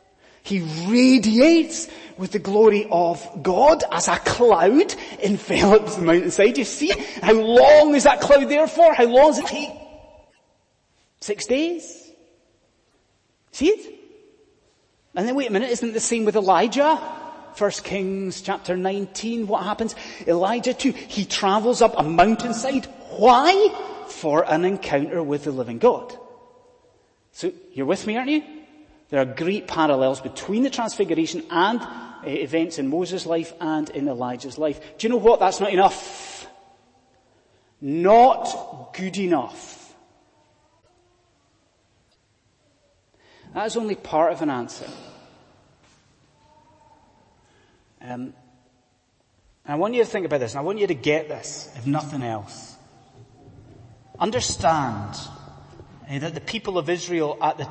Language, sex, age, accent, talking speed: English, male, 30-49, British, 140 wpm